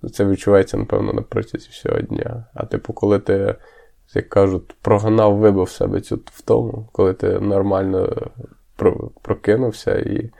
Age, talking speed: 20-39, 140 wpm